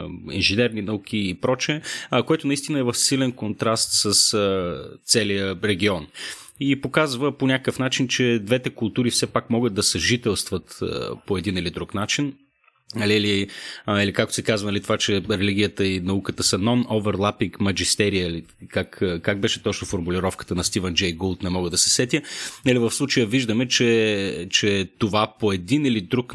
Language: Bulgarian